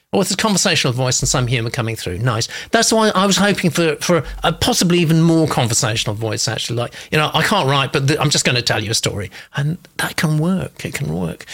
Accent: British